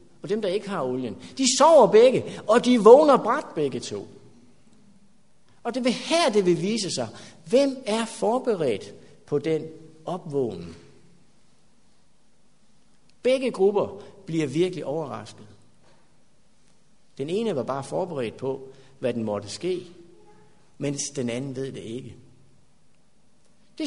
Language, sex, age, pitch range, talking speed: Danish, male, 60-79, 140-220 Hz, 130 wpm